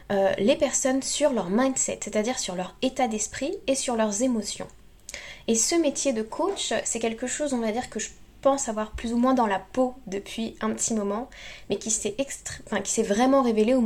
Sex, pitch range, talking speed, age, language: female, 215-265 Hz, 200 wpm, 10-29, French